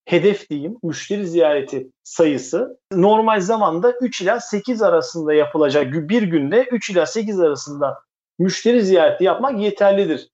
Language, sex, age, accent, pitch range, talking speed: Turkish, male, 50-69, native, 180-245 Hz, 130 wpm